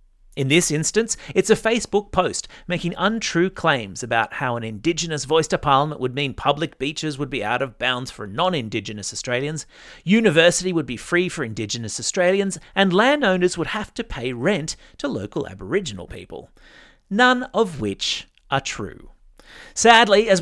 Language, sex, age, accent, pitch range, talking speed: English, male, 30-49, Australian, 130-195 Hz, 160 wpm